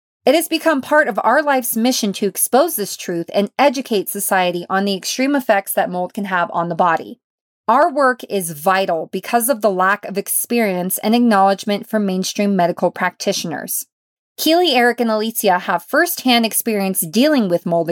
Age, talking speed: 30-49, 175 wpm